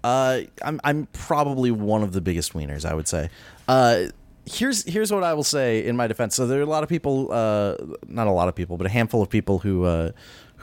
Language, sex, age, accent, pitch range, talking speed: English, male, 30-49, American, 95-125 Hz, 235 wpm